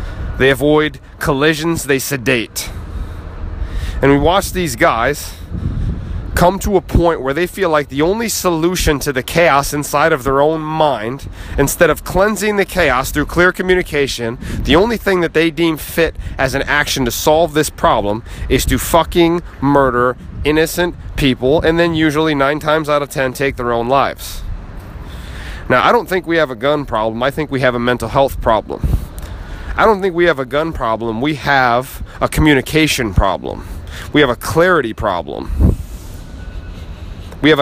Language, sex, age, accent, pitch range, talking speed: English, male, 30-49, American, 115-160 Hz, 170 wpm